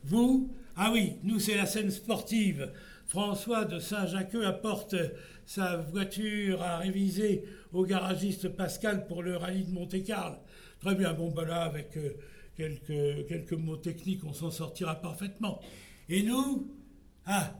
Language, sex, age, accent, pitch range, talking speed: French, male, 60-79, French, 170-215 Hz, 140 wpm